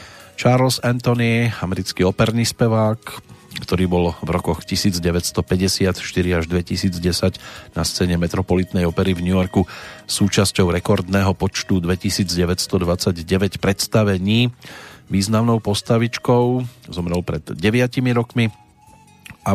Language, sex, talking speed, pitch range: Slovak, male, 95 wpm, 90-105 Hz